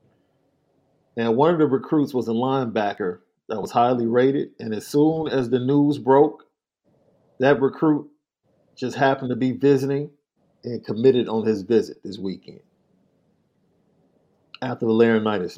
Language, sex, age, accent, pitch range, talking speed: English, male, 50-69, American, 115-155 Hz, 140 wpm